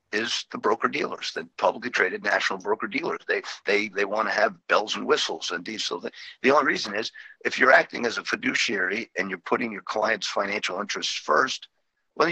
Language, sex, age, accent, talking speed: English, male, 50-69, American, 185 wpm